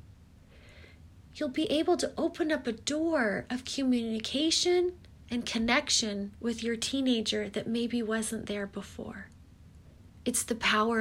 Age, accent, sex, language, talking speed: 30-49, American, female, English, 125 wpm